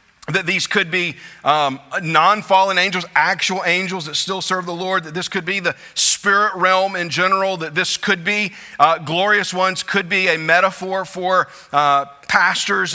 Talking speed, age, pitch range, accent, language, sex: 170 wpm, 40-59, 175-225 Hz, American, English, male